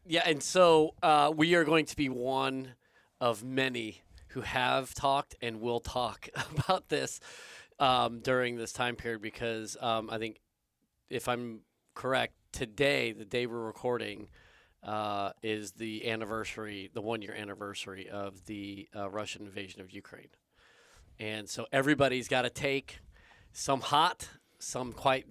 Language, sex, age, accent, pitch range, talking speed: English, male, 30-49, American, 110-135 Hz, 145 wpm